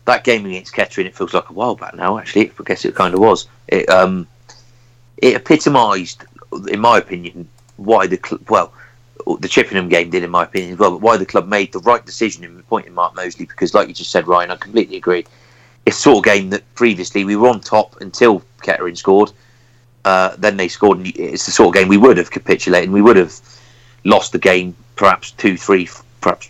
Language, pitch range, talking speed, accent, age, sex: English, 90-120 Hz, 220 wpm, British, 30-49, male